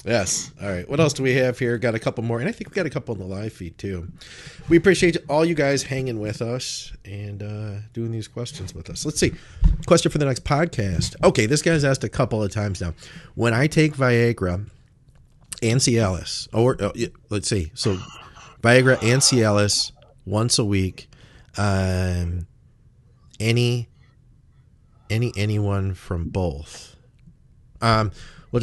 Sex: male